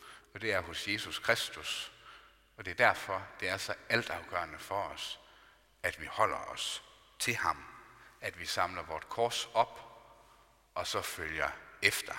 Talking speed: 160 wpm